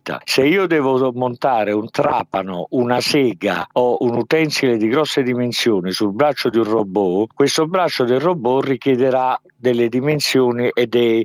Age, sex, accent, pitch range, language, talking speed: 50-69, male, native, 120-145 Hz, Italian, 150 wpm